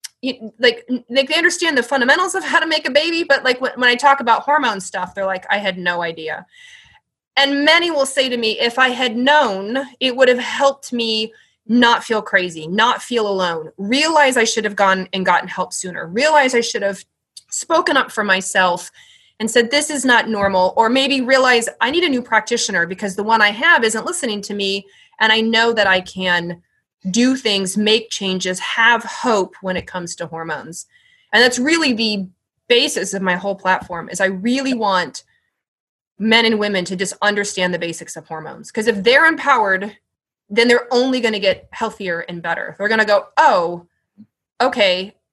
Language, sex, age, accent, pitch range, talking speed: English, female, 20-39, American, 190-255 Hz, 195 wpm